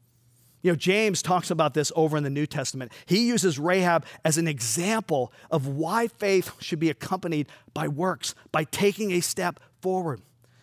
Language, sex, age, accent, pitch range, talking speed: English, male, 40-59, American, 140-195 Hz, 170 wpm